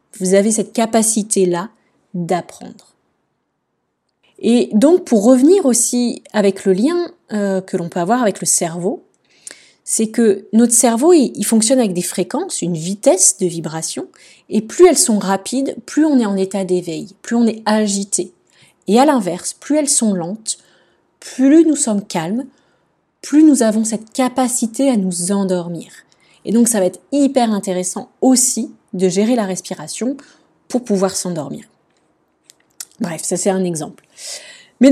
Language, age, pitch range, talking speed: French, 20-39, 190-255 Hz, 150 wpm